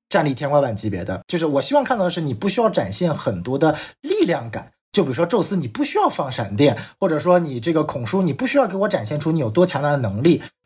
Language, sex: Chinese, male